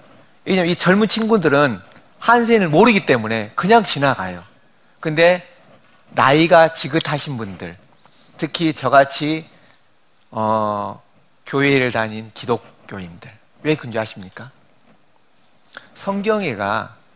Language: Korean